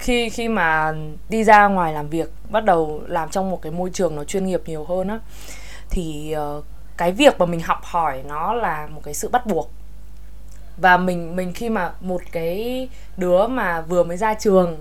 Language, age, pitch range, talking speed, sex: Vietnamese, 20-39, 165-215 Hz, 200 wpm, female